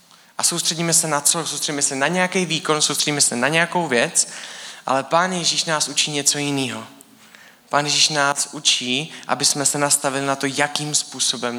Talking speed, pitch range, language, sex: 175 wpm, 135-170 Hz, Czech, male